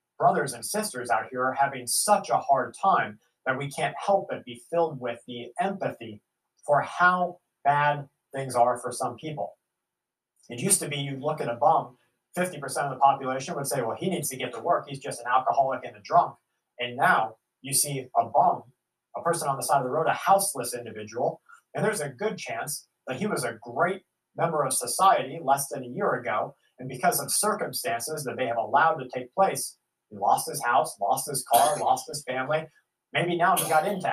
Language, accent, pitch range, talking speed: English, American, 120-165 Hz, 210 wpm